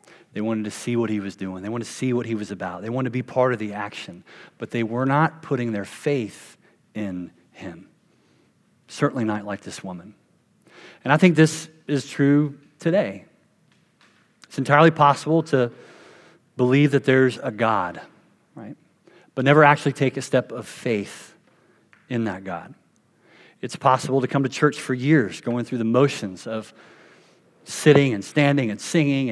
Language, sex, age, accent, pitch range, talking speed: English, male, 40-59, American, 110-140 Hz, 170 wpm